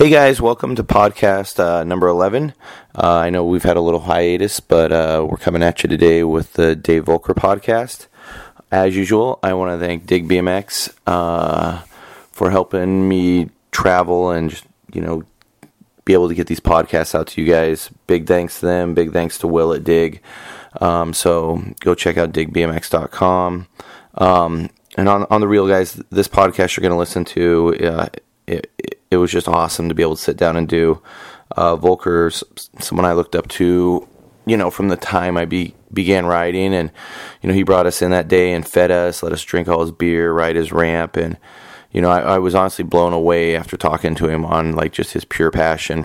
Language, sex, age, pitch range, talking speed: English, male, 30-49, 85-90 Hz, 205 wpm